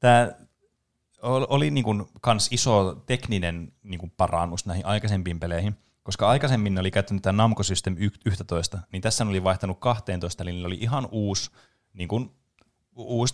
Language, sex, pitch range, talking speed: Finnish, male, 95-115 Hz, 135 wpm